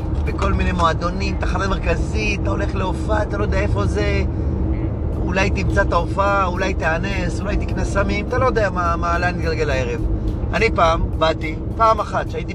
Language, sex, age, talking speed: Hebrew, male, 30-49, 165 wpm